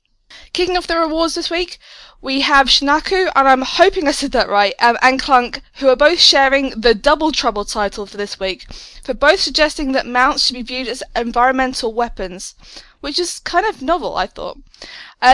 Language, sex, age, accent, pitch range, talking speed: English, female, 20-39, British, 235-305 Hz, 190 wpm